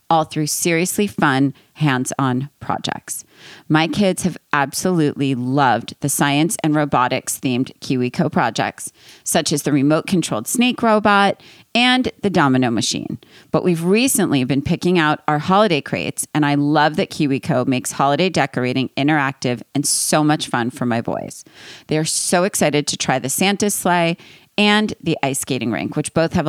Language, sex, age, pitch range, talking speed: English, female, 40-59, 140-180 Hz, 160 wpm